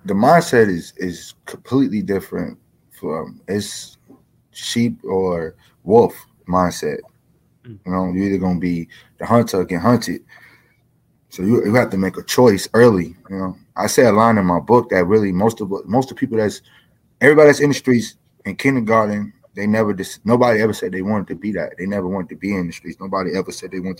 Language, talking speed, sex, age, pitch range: English, 200 wpm, male, 20-39, 90-110 Hz